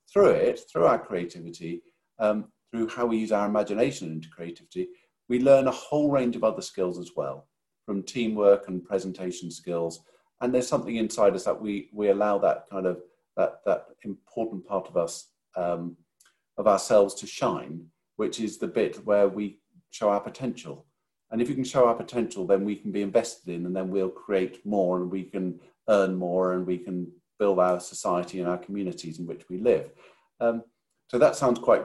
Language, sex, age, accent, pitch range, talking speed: English, male, 50-69, British, 90-115 Hz, 190 wpm